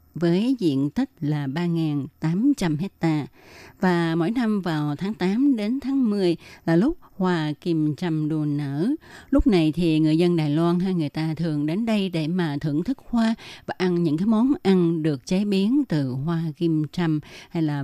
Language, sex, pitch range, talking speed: Vietnamese, female, 150-190 Hz, 185 wpm